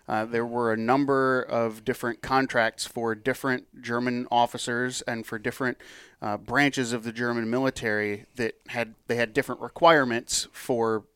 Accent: American